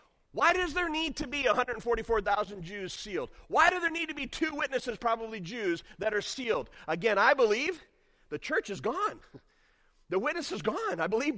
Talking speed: 185 wpm